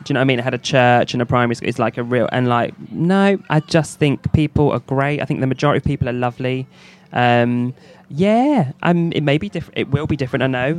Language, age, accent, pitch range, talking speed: English, 20-39, British, 125-165 Hz, 265 wpm